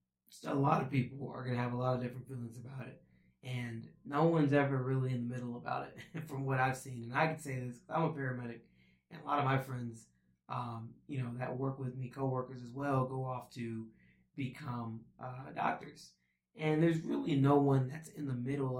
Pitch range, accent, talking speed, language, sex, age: 120-140 Hz, American, 225 wpm, English, male, 20-39